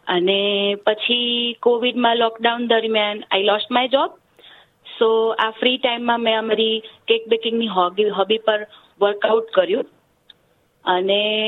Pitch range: 210-250 Hz